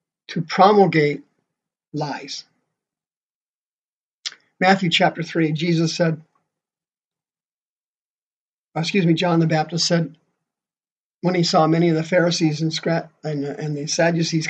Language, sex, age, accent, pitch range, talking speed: English, male, 50-69, American, 160-195 Hz, 100 wpm